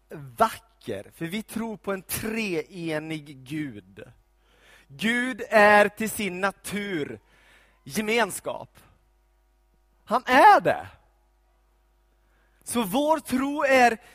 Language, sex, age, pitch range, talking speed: Swedish, male, 30-49, 180-235 Hz, 90 wpm